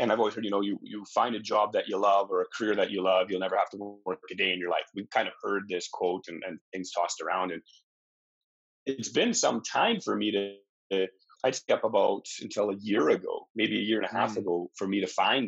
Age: 30-49